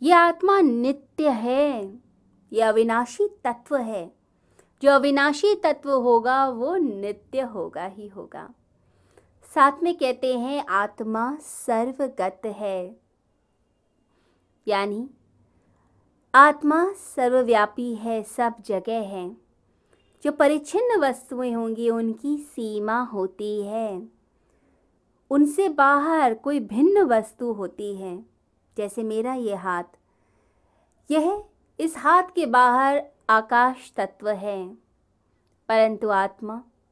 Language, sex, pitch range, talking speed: Hindi, female, 210-280 Hz, 100 wpm